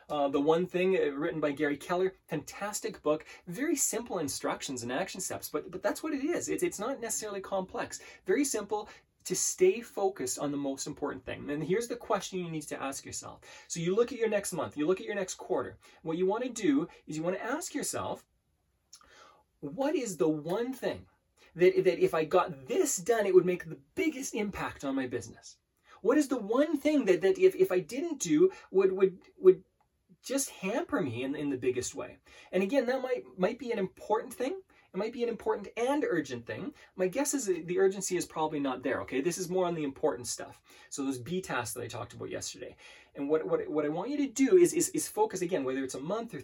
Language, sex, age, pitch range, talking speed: English, male, 30-49, 160-255 Hz, 235 wpm